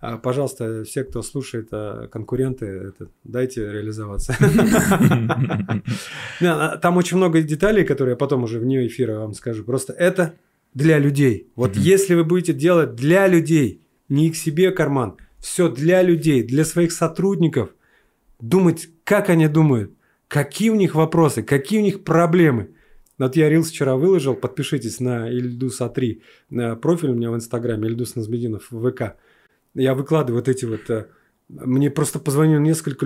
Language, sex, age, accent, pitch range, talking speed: Russian, male, 30-49, native, 125-165 Hz, 145 wpm